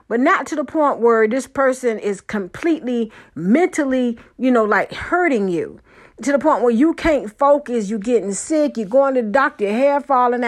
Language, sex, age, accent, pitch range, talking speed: English, female, 50-69, American, 220-270 Hz, 195 wpm